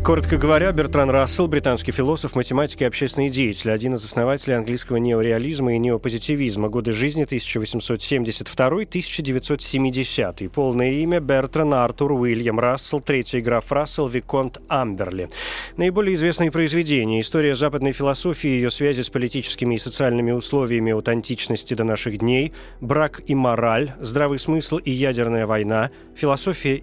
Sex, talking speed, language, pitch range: male, 130 wpm, Russian, 120-145 Hz